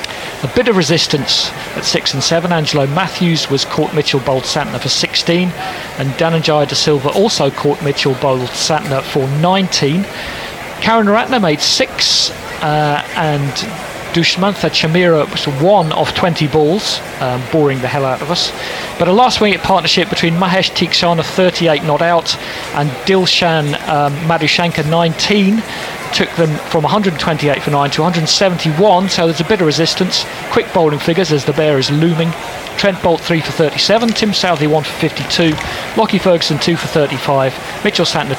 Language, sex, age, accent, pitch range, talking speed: English, male, 40-59, British, 150-185 Hz, 160 wpm